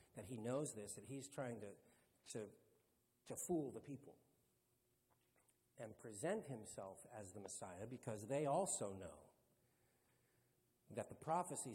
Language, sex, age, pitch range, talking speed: English, male, 50-69, 115-150 Hz, 135 wpm